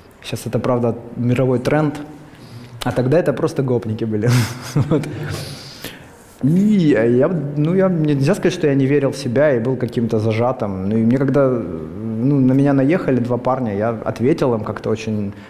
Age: 20-39